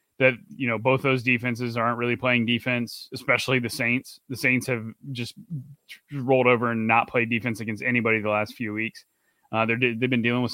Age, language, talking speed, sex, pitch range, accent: 20-39, English, 195 wpm, male, 110-125 Hz, American